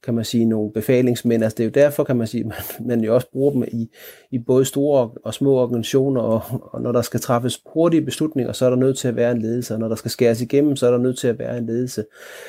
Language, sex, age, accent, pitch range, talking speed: Danish, male, 30-49, native, 115-140 Hz, 280 wpm